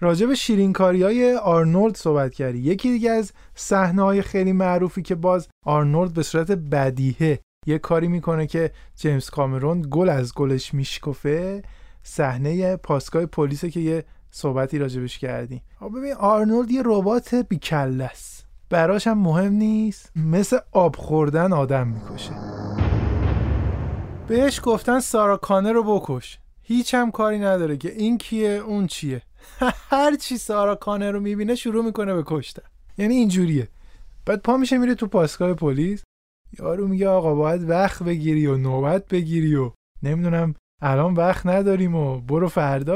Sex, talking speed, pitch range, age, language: male, 140 wpm, 145-210 Hz, 20-39, Persian